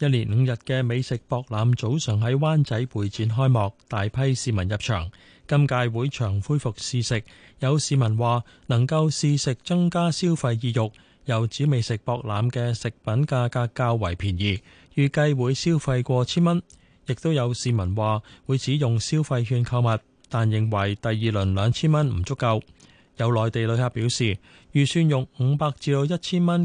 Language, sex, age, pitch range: Chinese, male, 20-39, 110-140 Hz